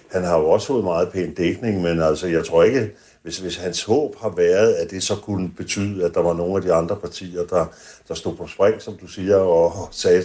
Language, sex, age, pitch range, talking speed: Danish, male, 60-79, 85-105 Hz, 245 wpm